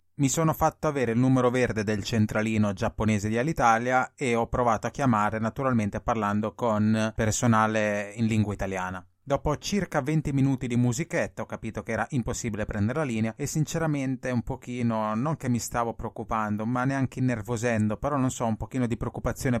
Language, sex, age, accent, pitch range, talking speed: Italian, male, 20-39, native, 110-130 Hz, 175 wpm